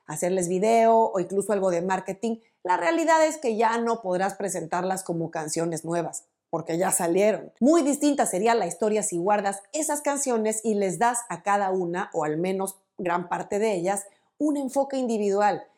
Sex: female